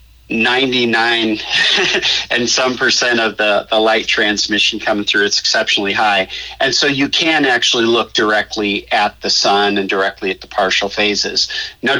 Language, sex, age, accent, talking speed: English, male, 50-69, American, 155 wpm